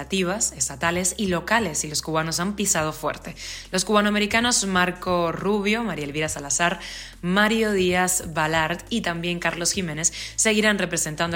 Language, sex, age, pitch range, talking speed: Spanish, female, 20-39, 160-190 Hz, 130 wpm